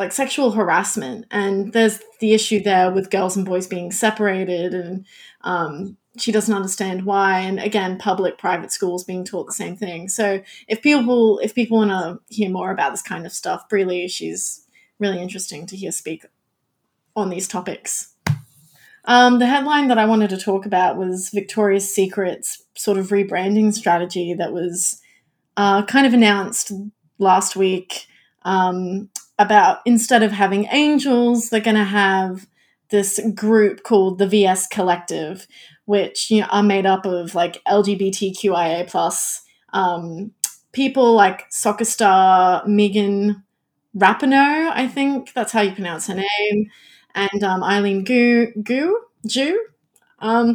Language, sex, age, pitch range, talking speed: English, female, 20-39, 185-225 Hz, 150 wpm